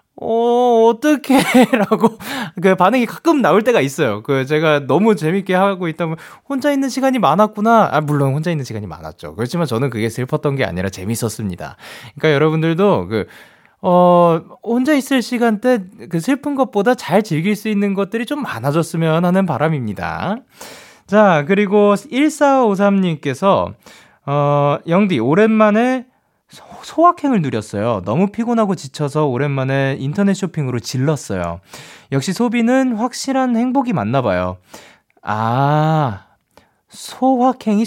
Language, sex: Korean, male